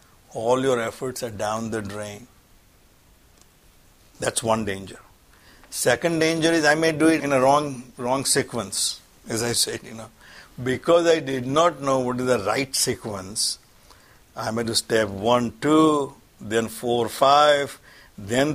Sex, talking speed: male, 150 wpm